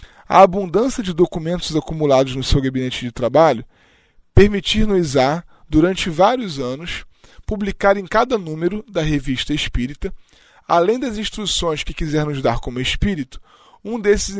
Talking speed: 140 wpm